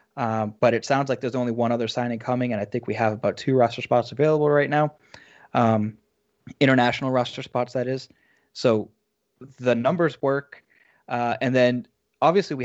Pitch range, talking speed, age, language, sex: 115-135 Hz, 180 wpm, 20-39, English, male